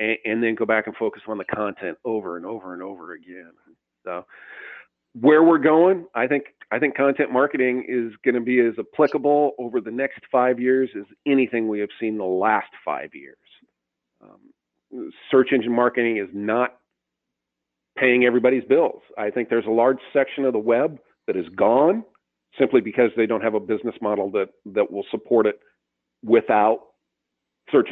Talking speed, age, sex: 175 wpm, 40-59, male